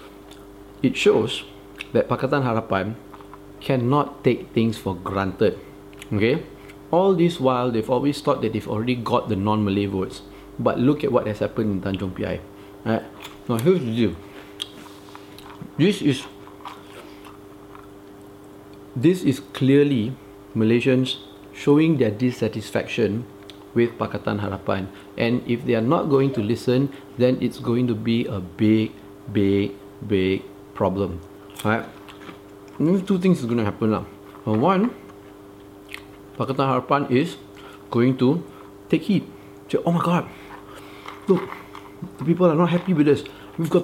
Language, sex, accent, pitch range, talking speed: English, male, Malaysian, 100-130 Hz, 130 wpm